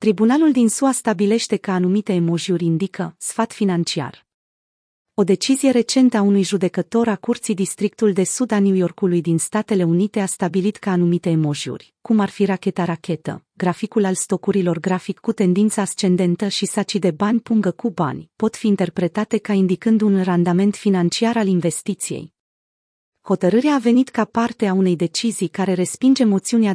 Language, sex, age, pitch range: Romanian, female, 30-49, 180-220 Hz